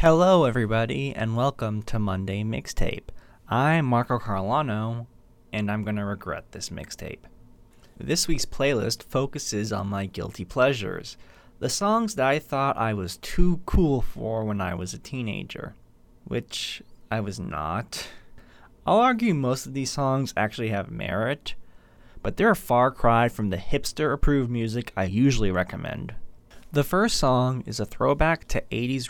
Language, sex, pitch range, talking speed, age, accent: English, male, 100-135 Hz, 155 wpm, 20-39, American